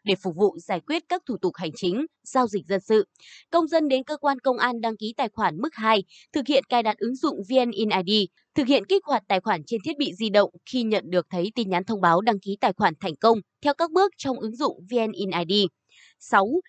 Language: Vietnamese